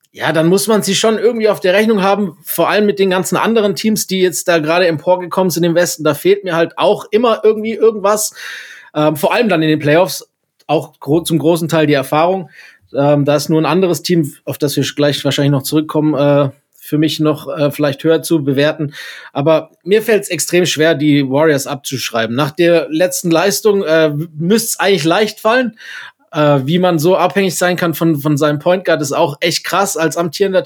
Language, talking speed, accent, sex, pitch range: German, 205 wpm, German, male, 150-190 Hz